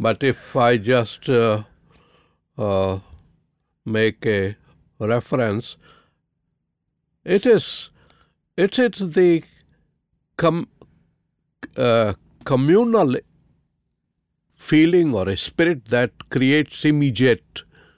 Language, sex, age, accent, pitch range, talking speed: English, male, 60-79, Indian, 110-150 Hz, 80 wpm